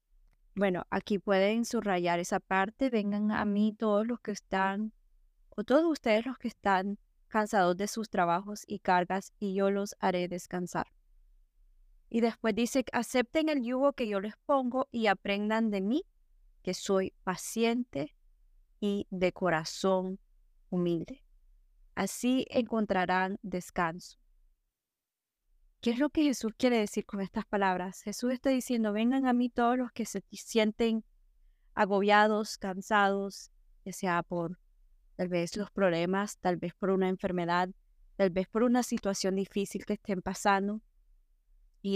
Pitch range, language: 180-220 Hz, English